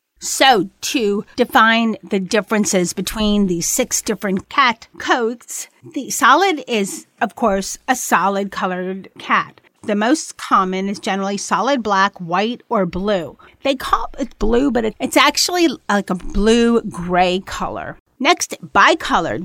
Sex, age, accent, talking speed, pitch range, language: female, 40-59, American, 135 wpm, 195-250 Hz, English